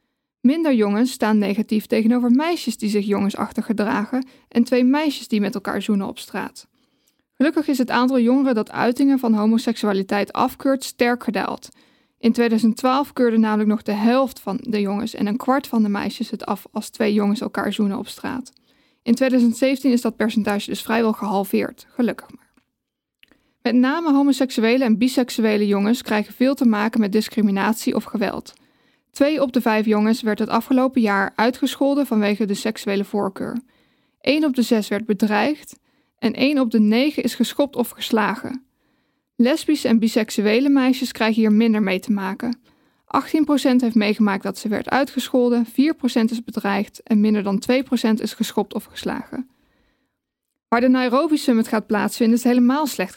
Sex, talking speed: female, 165 wpm